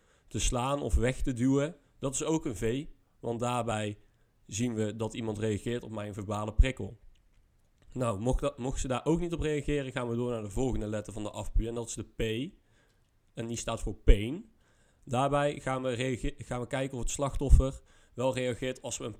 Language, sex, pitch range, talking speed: Dutch, male, 110-130 Hz, 210 wpm